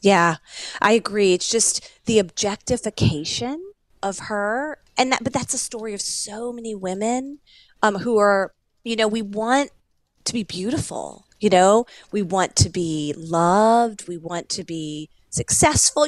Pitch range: 190-240 Hz